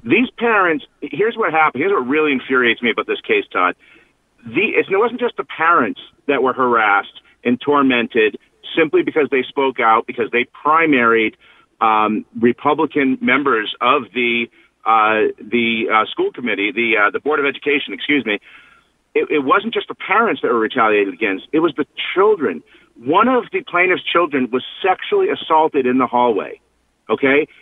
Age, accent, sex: 40-59, American, male